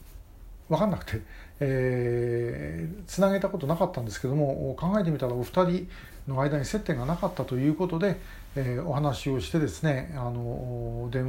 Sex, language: male, Japanese